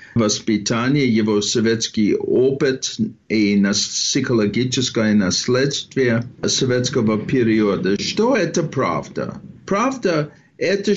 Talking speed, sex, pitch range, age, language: 80 wpm, male, 125-195 Hz, 50-69, Russian